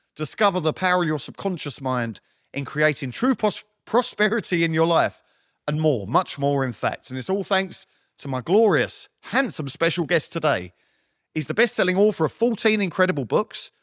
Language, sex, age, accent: English, male, 40-59, British